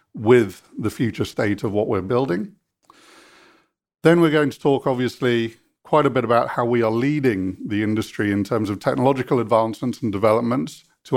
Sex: male